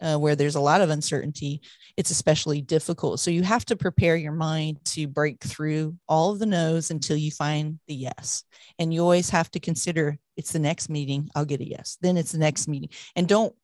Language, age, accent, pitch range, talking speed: English, 40-59, American, 150-170 Hz, 220 wpm